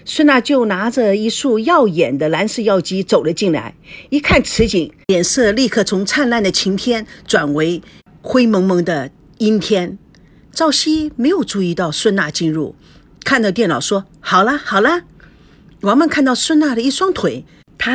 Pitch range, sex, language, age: 195-315 Hz, female, Chinese, 50-69